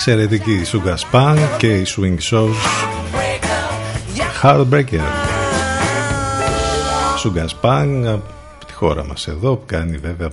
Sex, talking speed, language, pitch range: male, 100 wpm, Greek, 90-115 Hz